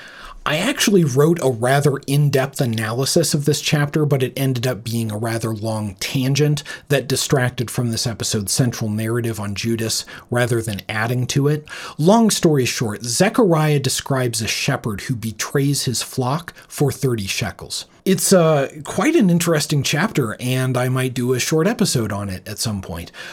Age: 40-59